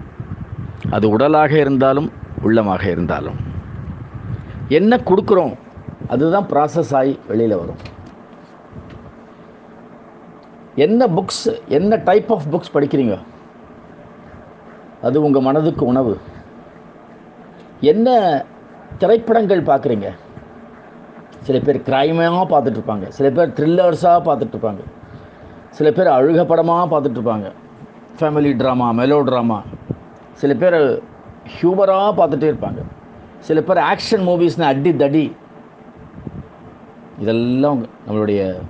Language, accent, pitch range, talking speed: Tamil, native, 115-170 Hz, 85 wpm